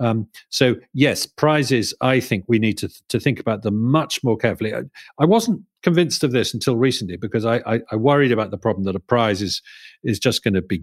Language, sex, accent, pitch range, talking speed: English, male, British, 100-140 Hz, 225 wpm